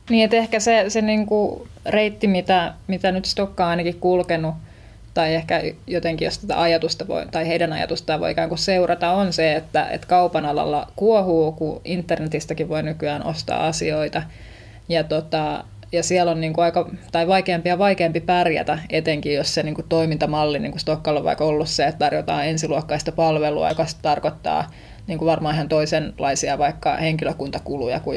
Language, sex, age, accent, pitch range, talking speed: Finnish, female, 20-39, native, 155-175 Hz, 160 wpm